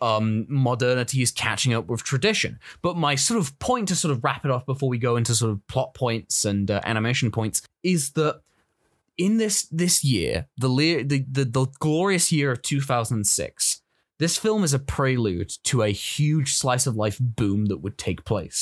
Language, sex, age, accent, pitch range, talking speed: English, male, 20-39, British, 115-145 Hz, 195 wpm